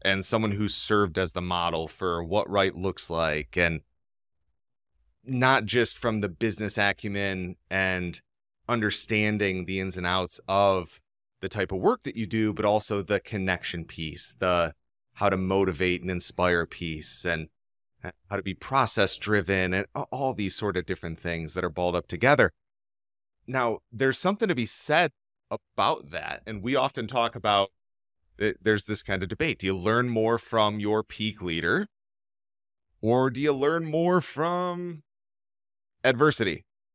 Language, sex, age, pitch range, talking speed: English, male, 30-49, 90-115 Hz, 155 wpm